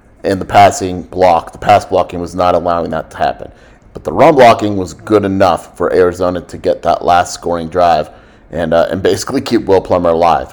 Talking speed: 205 wpm